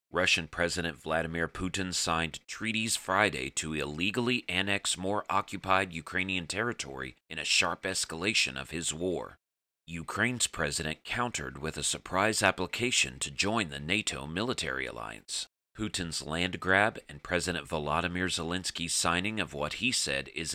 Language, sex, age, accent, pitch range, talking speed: English, male, 40-59, American, 75-100 Hz, 135 wpm